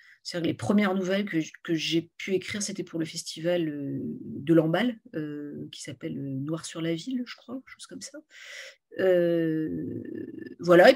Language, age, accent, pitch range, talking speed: French, 50-69, French, 175-235 Hz, 170 wpm